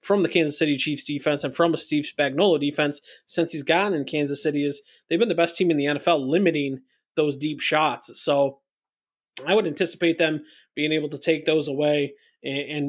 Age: 20-39